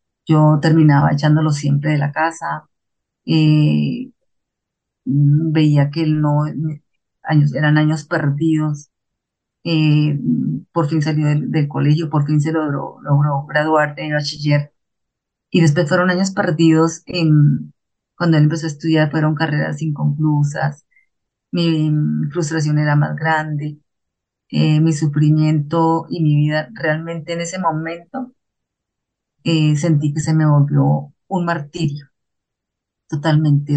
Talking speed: 120 wpm